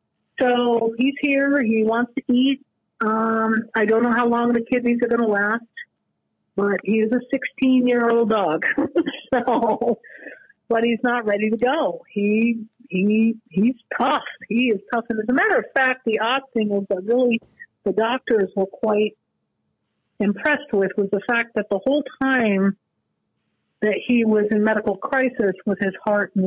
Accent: American